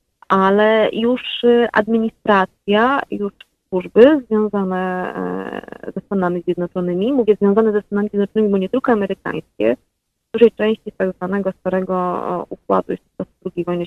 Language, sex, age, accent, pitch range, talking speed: Polish, female, 30-49, native, 190-240 Hz, 125 wpm